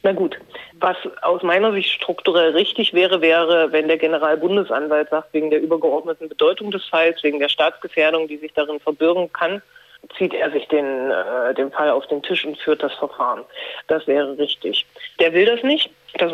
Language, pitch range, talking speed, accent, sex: German, 155-185 Hz, 180 wpm, German, female